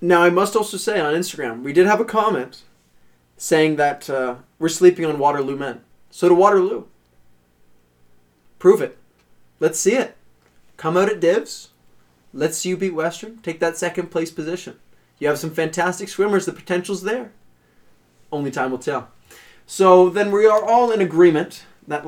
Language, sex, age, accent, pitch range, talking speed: English, male, 20-39, American, 115-180 Hz, 170 wpm